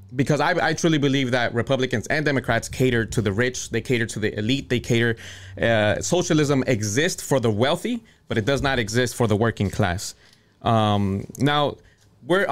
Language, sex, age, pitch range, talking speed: English, male, 20-39, 115-155 Hz, 180 wpm